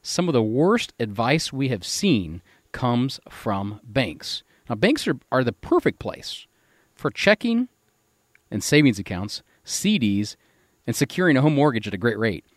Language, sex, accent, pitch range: English, male, American, 105-150 Hz